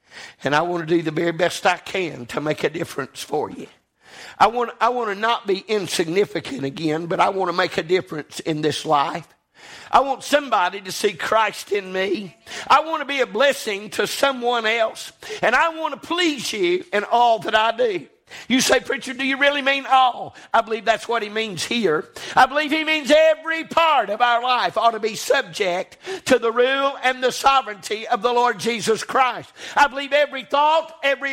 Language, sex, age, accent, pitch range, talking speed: English, male, 50-69, American, 220-310 Hz, 205 wpm